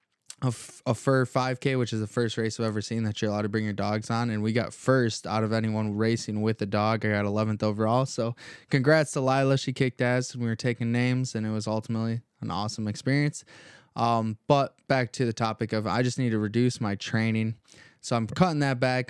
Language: English